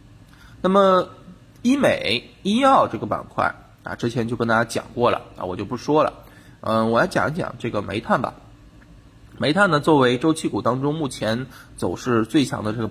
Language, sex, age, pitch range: Chinese, male, 20-39, 115-145 Hz